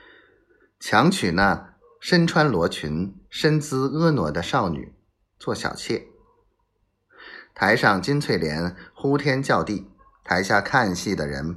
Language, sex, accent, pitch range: Chinese, male, native, 110-180 Hz